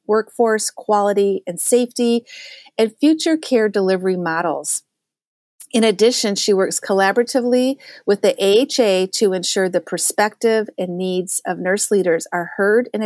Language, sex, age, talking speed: English, female, 40-59, 135 wpm